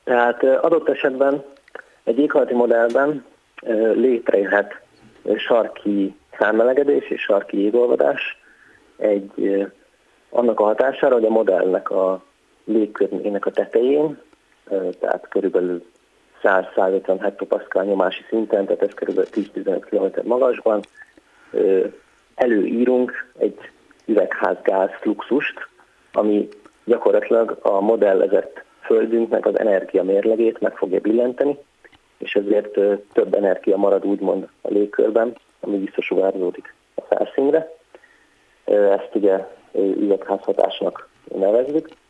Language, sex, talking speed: Hungarian, male, 95 wpm